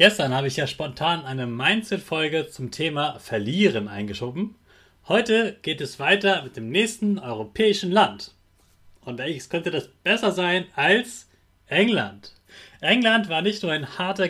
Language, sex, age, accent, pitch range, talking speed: German, male, 30-49, German, 120-200 Hz, 145 wpm